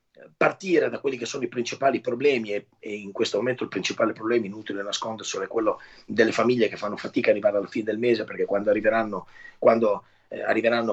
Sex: male